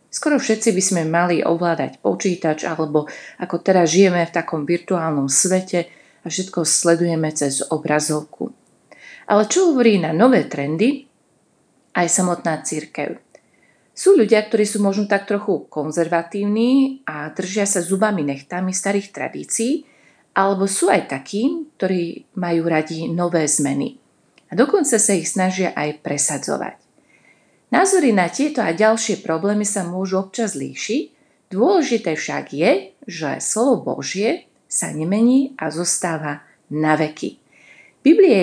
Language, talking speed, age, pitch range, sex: Slovak, 130 wpm, 30-49, 165-225 Hz, female